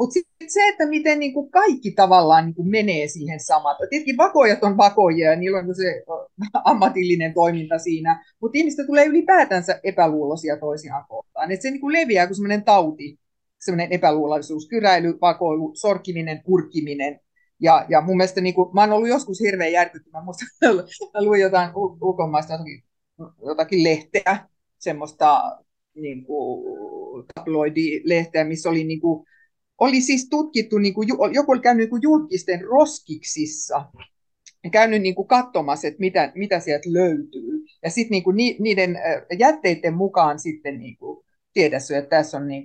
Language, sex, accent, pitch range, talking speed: Finnish, female, native, 160-250 Hz, 125 wpm